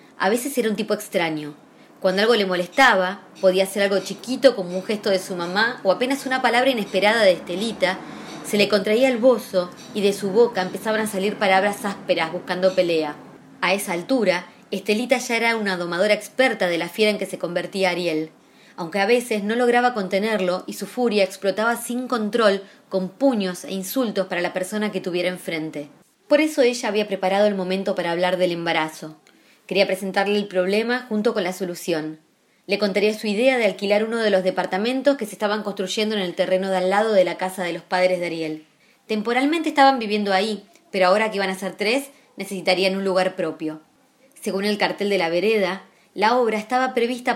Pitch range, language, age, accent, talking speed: 185-220 Hz, Spanish, 20-39, Argentinian, 195 wpm